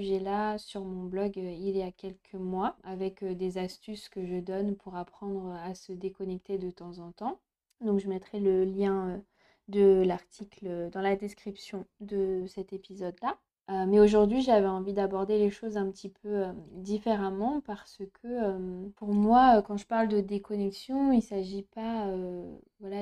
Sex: female